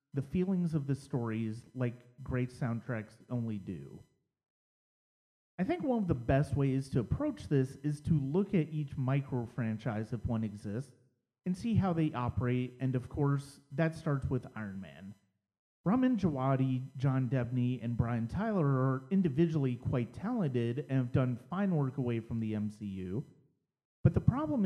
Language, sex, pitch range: English, male, 120-155 Hz